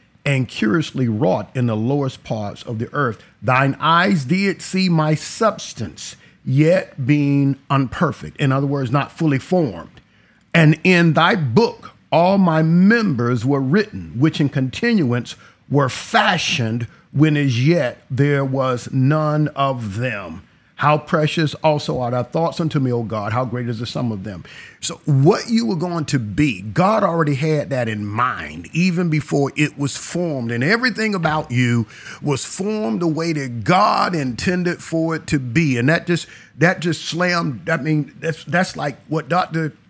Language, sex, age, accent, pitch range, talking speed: English, male, 50-69, American, 125-170 Hz, 165 wpm